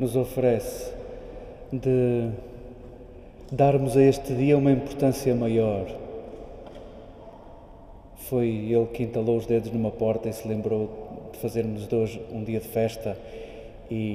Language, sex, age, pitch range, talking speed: Portuguese, male, 20-39, 115-135 Hz, 125 wpm